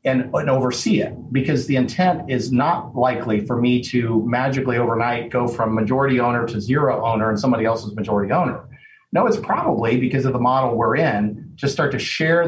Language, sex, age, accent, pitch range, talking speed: English, male, 40-59, American, 115-135 Hz, 190 wpm